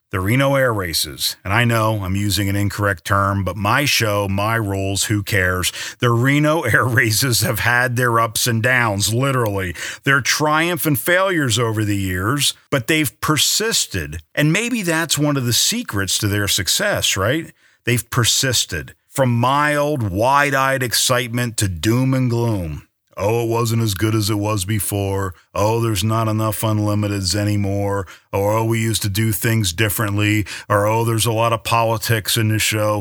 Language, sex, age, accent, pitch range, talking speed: English, male, 50-69, American, 105-130 Hz, 170 wpm